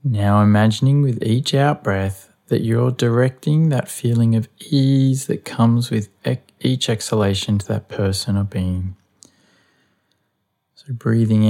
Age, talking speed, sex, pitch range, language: 20-39, 125 wpm, male, 100-120 Hz, English